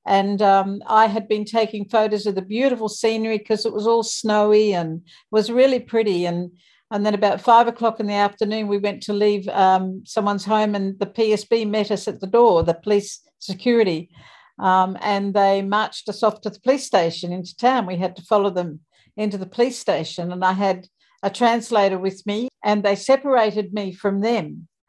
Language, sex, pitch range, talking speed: English, female, 195-240 Hz, 195 wpm